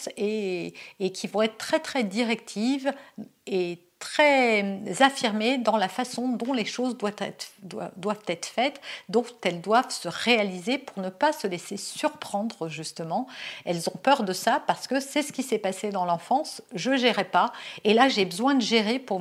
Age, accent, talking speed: 50-69, French, 185 wpm